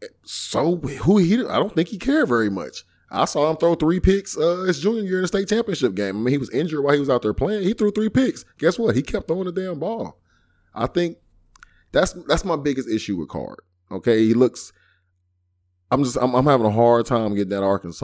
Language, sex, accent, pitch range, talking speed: English, male, American, 90-120 Hz, 235 wpm